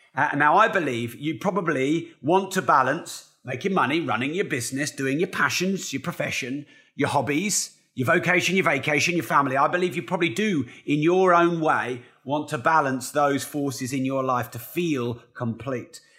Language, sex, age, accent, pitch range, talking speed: English, male, 30-49, British, 135-175 Hz, 175 wpm